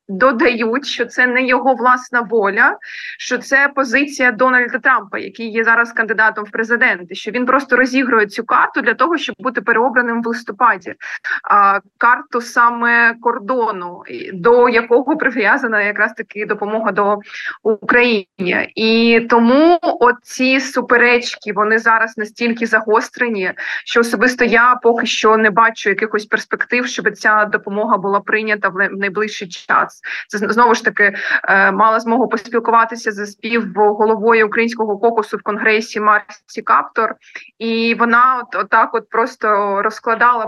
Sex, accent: female, native